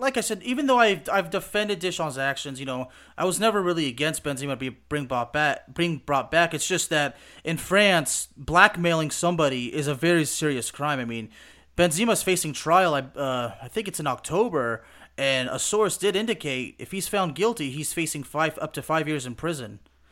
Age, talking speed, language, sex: 30-49, 190 wpm, English, male